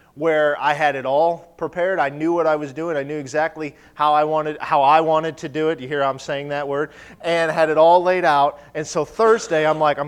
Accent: American